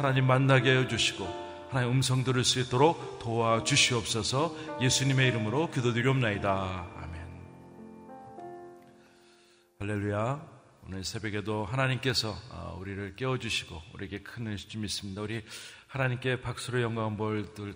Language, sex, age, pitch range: Korean, male, 40-59, 95-115 Hz